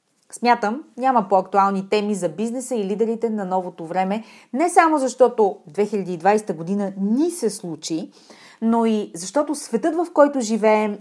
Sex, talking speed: female, 140 wpm